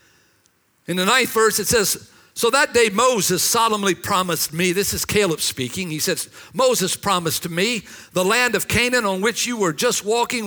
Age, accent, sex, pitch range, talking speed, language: 50-69, American, male, 170-225 Hz, 190 wpm, English